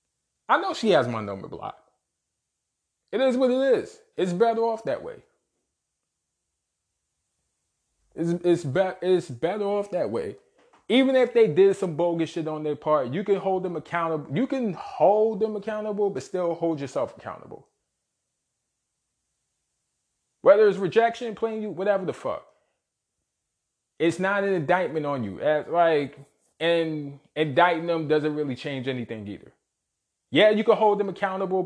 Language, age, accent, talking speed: English, 20-39, American, 145 wpm